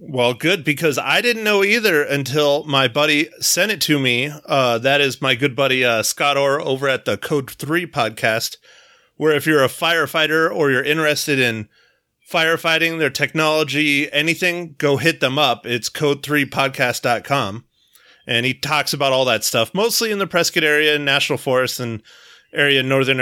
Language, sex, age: English, male, 30-49